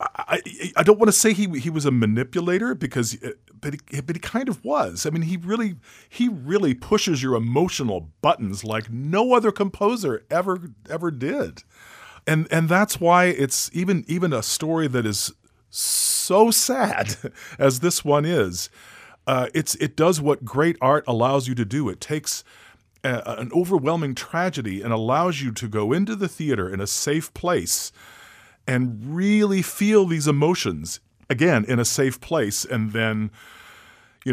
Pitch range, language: 110-170 Hz, English